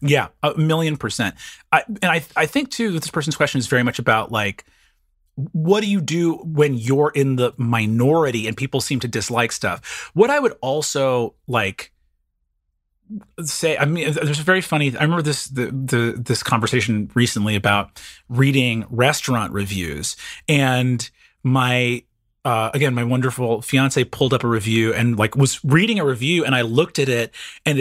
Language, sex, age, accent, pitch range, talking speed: English, male, 30-49, American, 115-150 Hz, 175 wpm